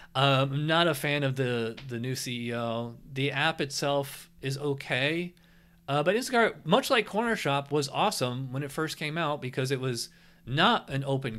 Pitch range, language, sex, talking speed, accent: 120-165 Hz, English, male, 180 wpm, American